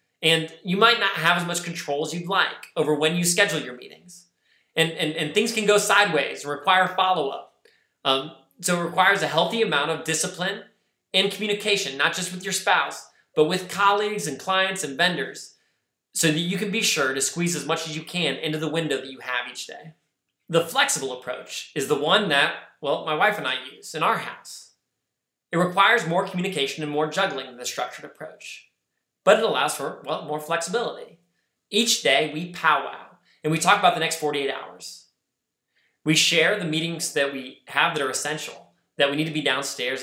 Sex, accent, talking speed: male, American, 200 wpm